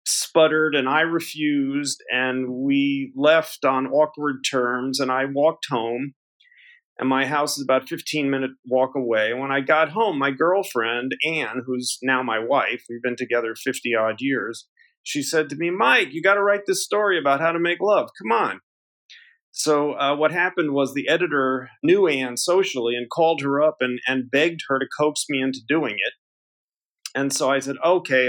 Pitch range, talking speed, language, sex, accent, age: 125-155 Hz, 180 wpm, English, male, American, 40-59